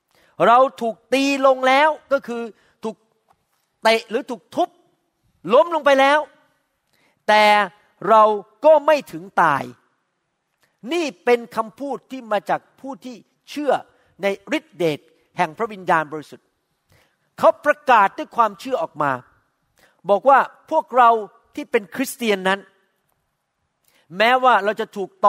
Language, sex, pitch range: Thai, male, 200-260 Hz